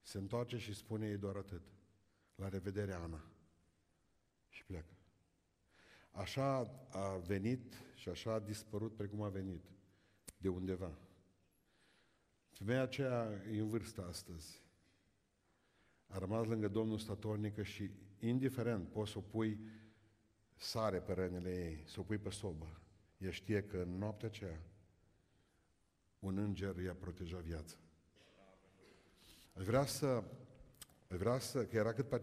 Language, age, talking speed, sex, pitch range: Romanian, 50-69, 125 wpm, male, 95-120 Hz